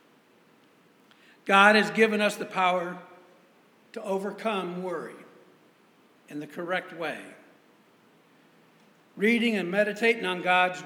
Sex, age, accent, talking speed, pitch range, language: male, 60-79, American, 100 wpm, 170-210 Hz, English